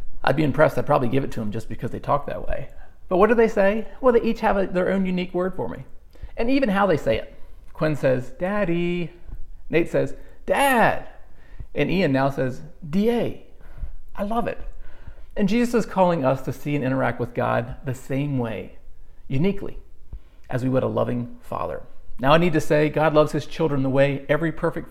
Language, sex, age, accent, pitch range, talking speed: English, male, 40-59, American, 120-165 Hz, 200 wpm